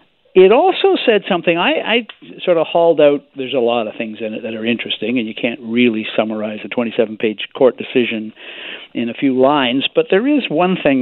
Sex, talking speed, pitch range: male, 205 wpm, 120-185 Hz